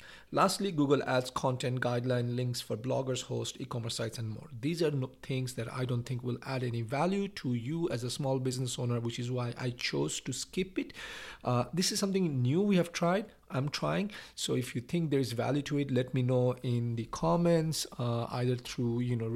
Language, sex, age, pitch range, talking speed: English, male, 50-69, 125-145 Hz, 215 wpm